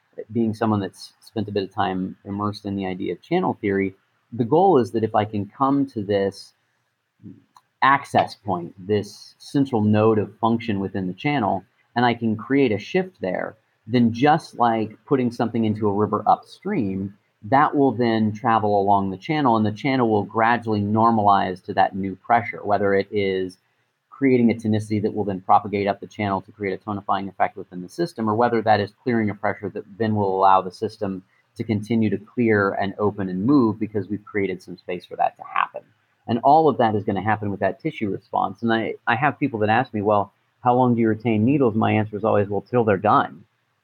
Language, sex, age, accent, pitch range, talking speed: English, male, 30-49, American, 100-120 Hz, 210 wpm